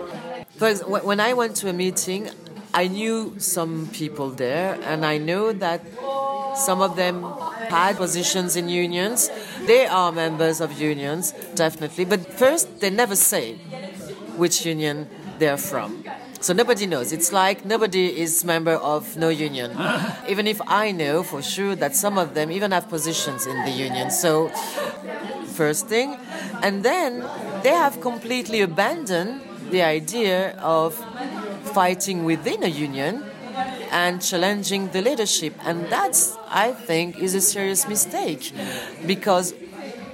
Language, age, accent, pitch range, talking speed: English, 40-59, French, 165-215 Hz, 140 wpm